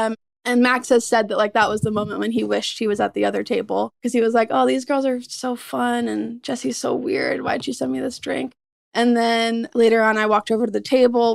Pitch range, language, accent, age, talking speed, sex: 225-300 Hz, English, American, 20-39, 265 wpm, female